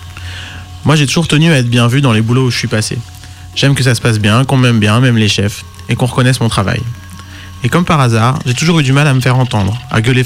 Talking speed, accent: 275 wpm, French